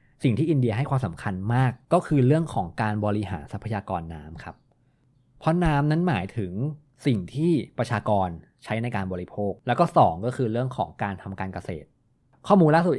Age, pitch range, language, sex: 20-39, 100-130 Hz, Thai, male